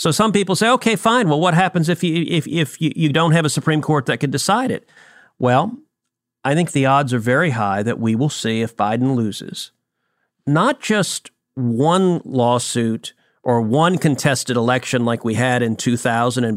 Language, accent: English, American